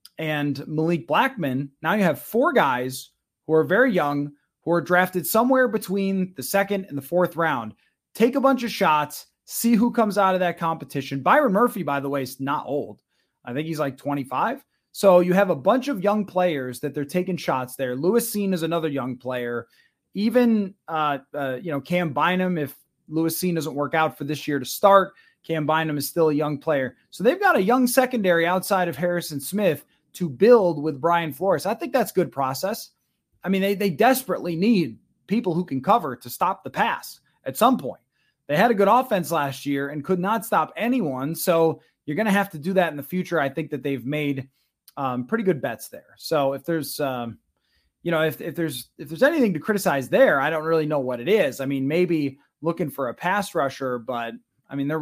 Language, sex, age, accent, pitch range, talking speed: English, male, 20-39, American, 140-190 Hz, 210 wpm